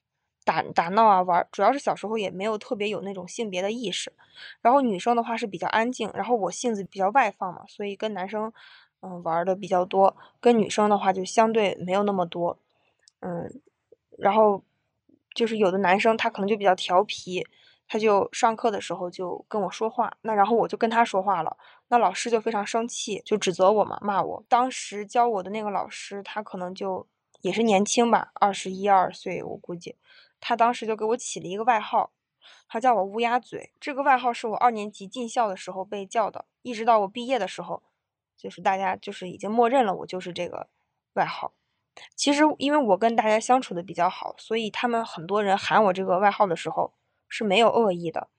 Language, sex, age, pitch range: Chinese, female, 10-29, 185-230 Hz